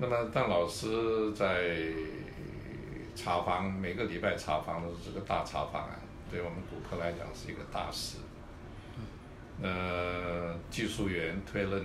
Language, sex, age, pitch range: Chinese, male, 60-79, 85-100 Hz